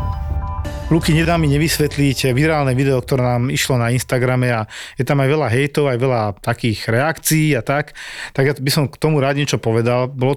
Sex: male